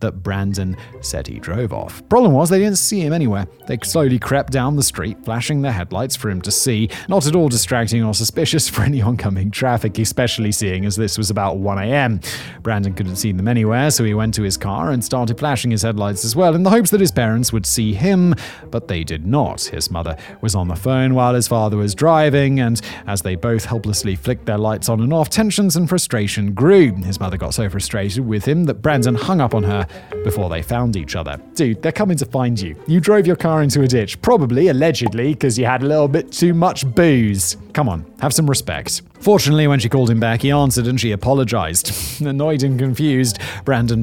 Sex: male